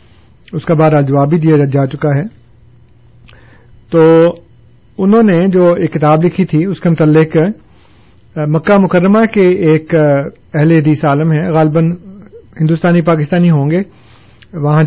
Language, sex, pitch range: Urdu, male, 135-170 Hz